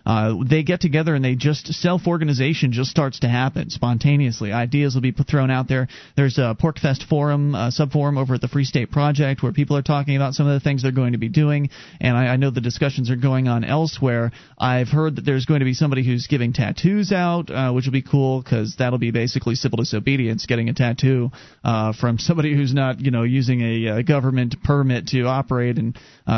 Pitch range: 125-160 Hz